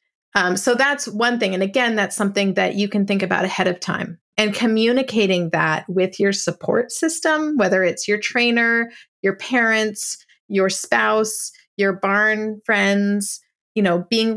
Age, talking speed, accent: 30-49, 160 wpm, American